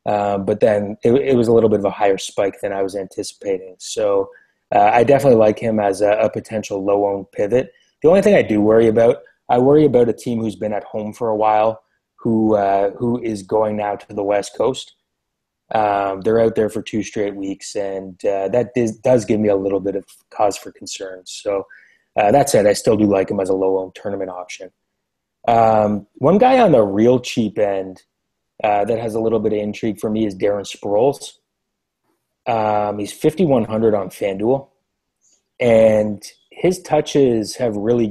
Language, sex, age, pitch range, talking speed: English, male, 20-39, 100-115 Hz, 195 wpm